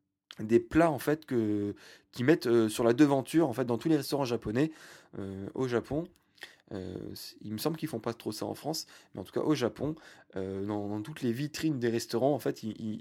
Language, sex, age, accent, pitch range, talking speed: French, male, 20-39, French, 115-155 Hz, 230 wpm